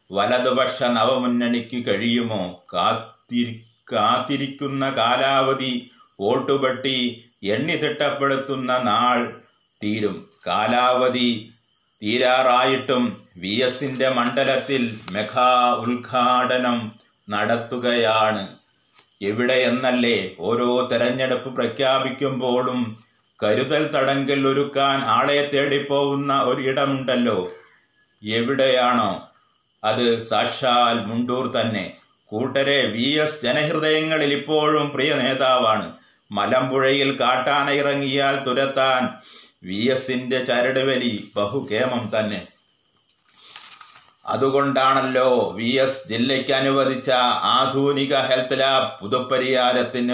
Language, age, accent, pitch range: Malayalam, 30-49, native, 120-135 Hz